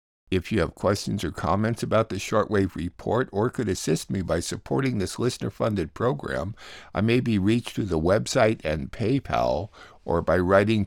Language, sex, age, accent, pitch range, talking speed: English, male, 60-79, American, 95-120 Hz, 170 wpm